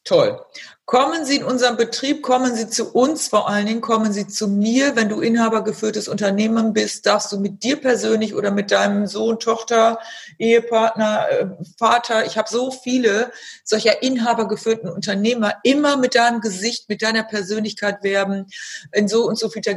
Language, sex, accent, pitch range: German, female, German, 185-235 Hz